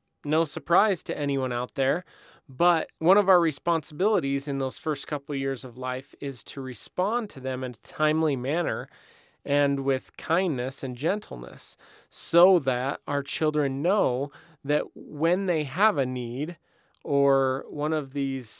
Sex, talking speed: male, 150 wpm